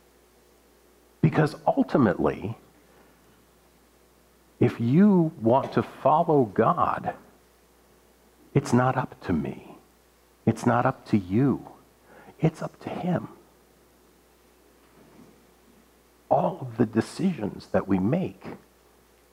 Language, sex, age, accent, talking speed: English, male, 50-69, American, 90 wpm